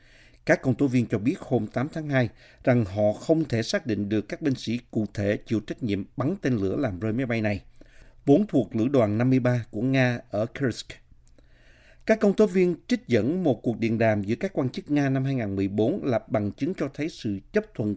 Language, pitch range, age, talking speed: Vietnamese, 110-145 Hz, 50-69, 225 wpm